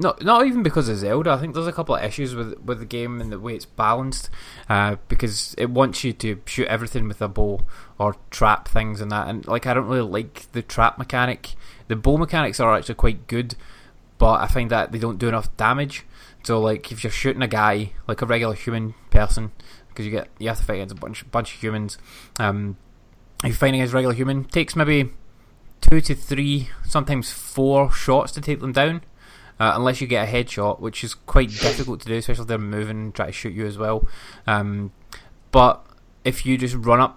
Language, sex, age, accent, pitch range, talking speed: English, male, 20-39, British, 105-130 Hz, 225 wpm